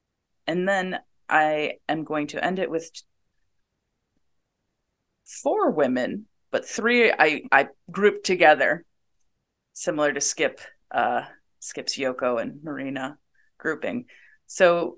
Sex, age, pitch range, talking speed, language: female, 30-49, 130-195 Hz, 110 wpm, English